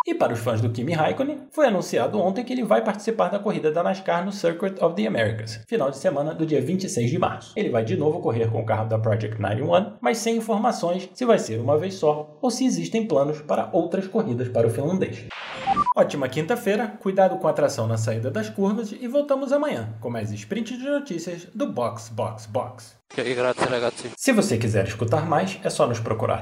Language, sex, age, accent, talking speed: Portuguese, male, 20-39, Brazilian, 210 wpm